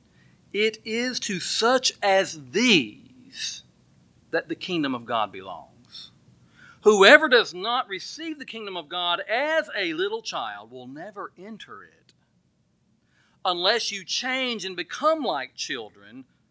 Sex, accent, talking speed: male, American, 125 wpm